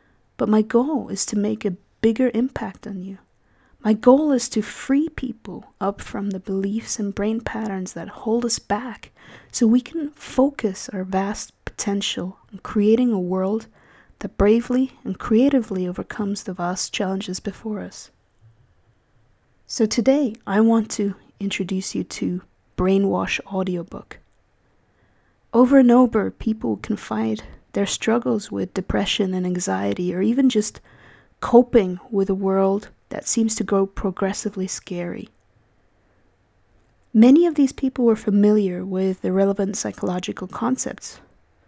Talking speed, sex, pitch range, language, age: 135 wpm, female, 180-230 Hz, English, 20-39